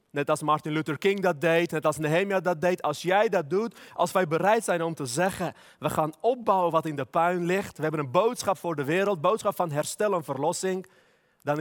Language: Dutch